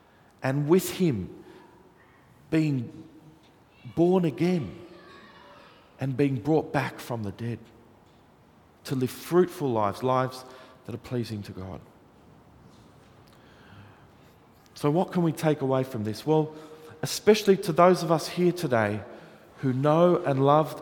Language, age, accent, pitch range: English, 40-59, Australian, 120-165 Hz